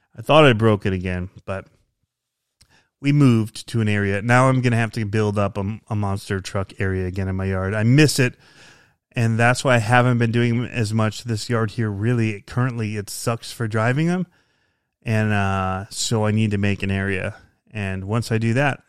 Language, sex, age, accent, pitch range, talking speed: English, male, 30-49, American, 100-120 Hz, 210 wpm